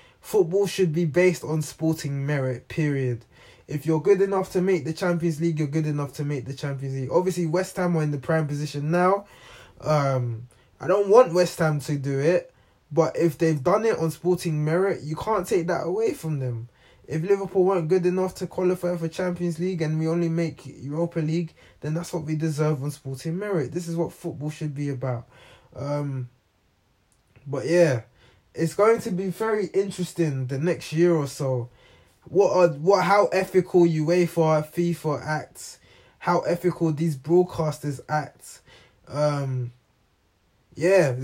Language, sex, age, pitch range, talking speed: English, male, 20-39, 135-175 Hz, 170 wpm